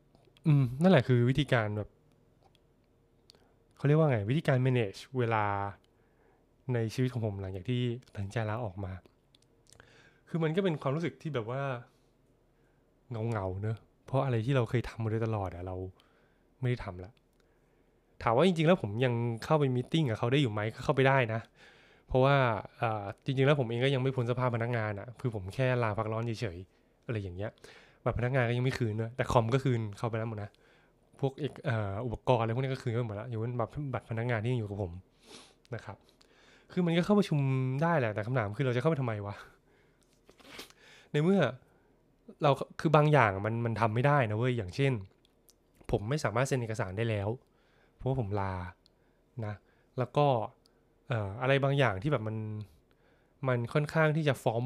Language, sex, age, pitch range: Thai, male, 20-39, 110-135 Hz